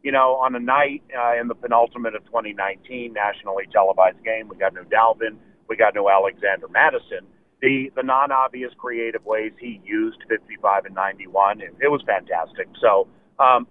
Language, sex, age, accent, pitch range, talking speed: English, male, 40-59, American, 115-165 Hz, 170 wpm